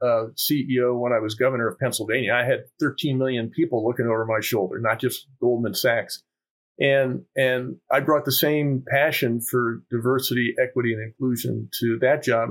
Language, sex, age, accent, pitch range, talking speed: English, male, 40-59, American, 120-150 Hz, 175 wpm